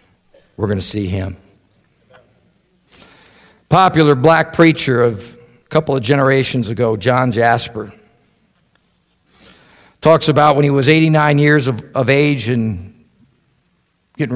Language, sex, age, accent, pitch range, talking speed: English, male, 50-69, American, 135-185 Hz, 115 wpm